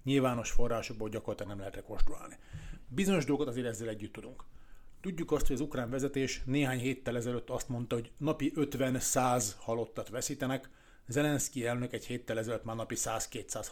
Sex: male